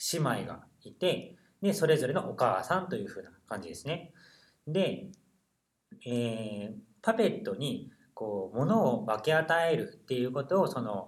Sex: male